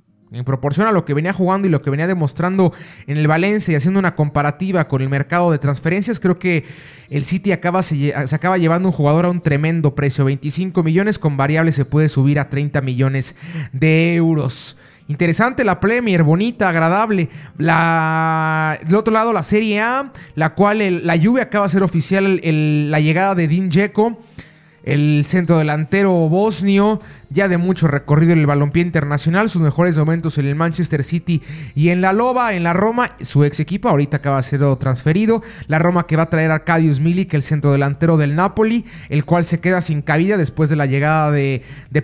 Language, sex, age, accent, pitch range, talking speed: Spanish, male, 20-39, Mexican, 150-190 Hz, 195 wpm